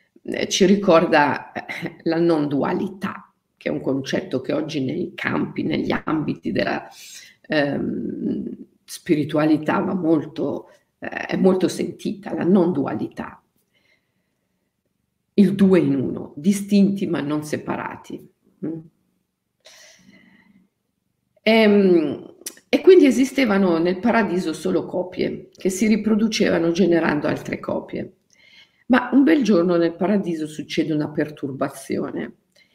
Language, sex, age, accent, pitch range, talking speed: Italian, female, 50-69, native, 165-225 Hz, 105 wpm